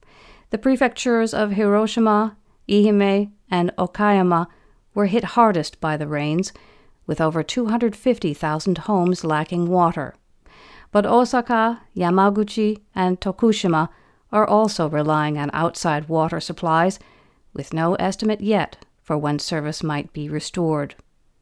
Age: 50-69